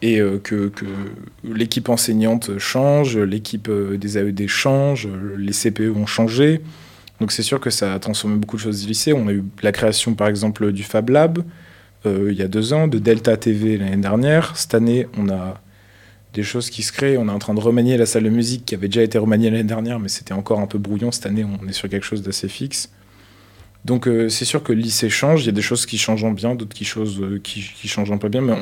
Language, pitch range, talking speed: French, 100-120 Hz, 240 wpm